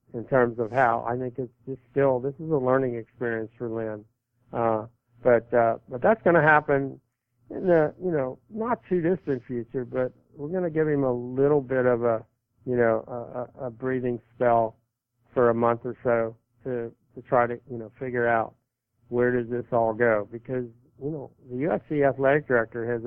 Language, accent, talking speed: English, American, 195 wpm